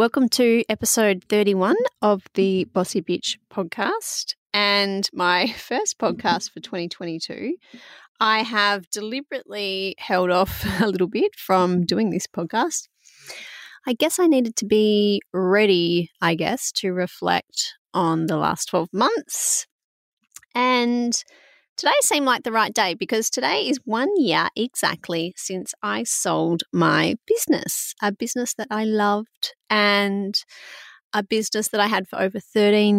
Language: English